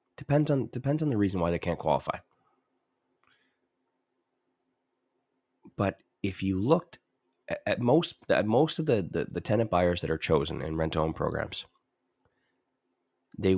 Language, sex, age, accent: English, male, 30-49, American